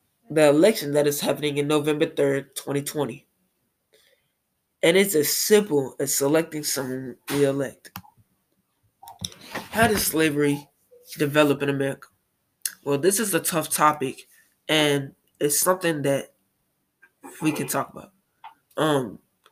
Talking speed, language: 120 wpm, English